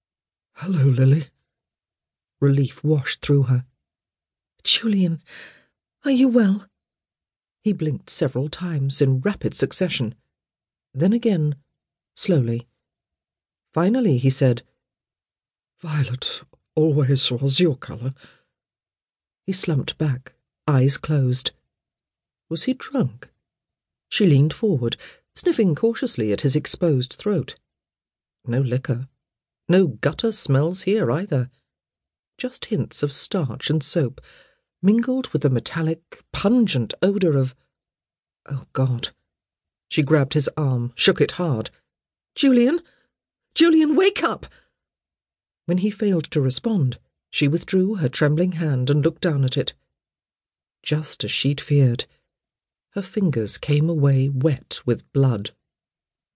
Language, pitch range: English, 120-175 Hz